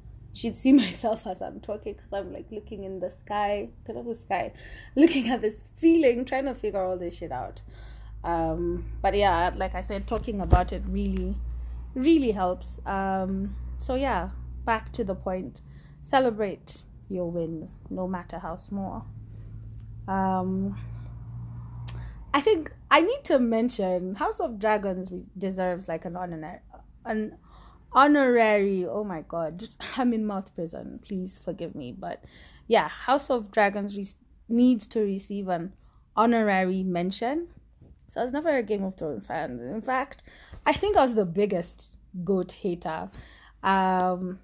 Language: English